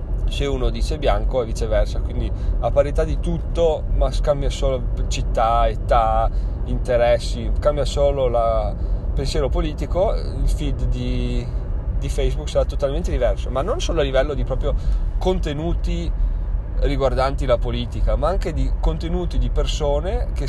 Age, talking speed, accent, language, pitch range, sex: 30-49, 140 wpm, native, Italian, 95-125 Hz, male